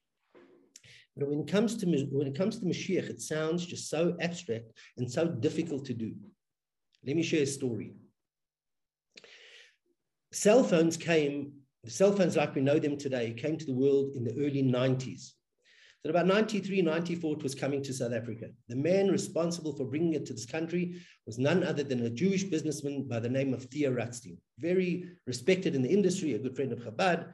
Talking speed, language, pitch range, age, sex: 180 wpm, English, 135-185 Hz, 50-69, male